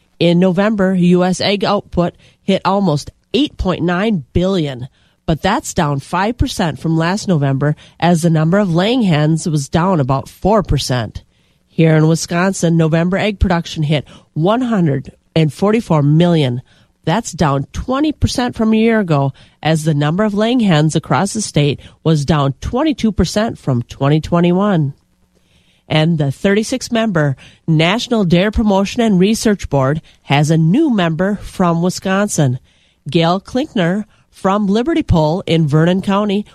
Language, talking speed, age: English, 130 wpm, 40-59